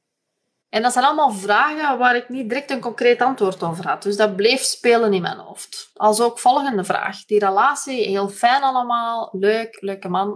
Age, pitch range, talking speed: 20-39, 205-255 Hz, 190 wpm